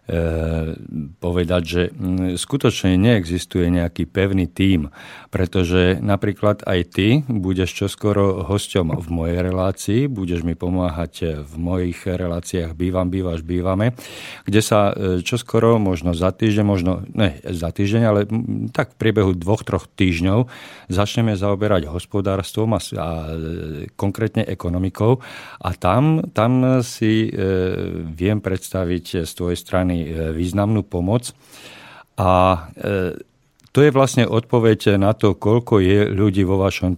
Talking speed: 120 wpm